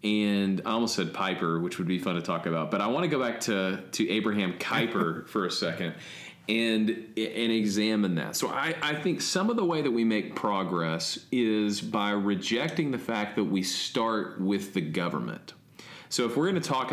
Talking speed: 205 wpm